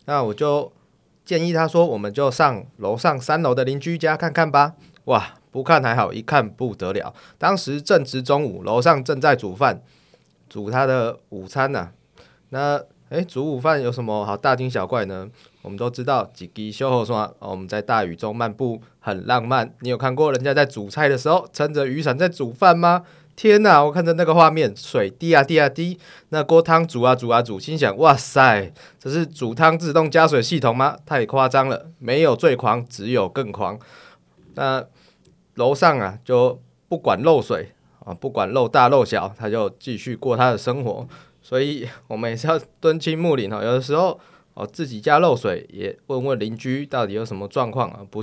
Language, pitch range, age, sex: Chinese, 115-160 Hz, 20-39, male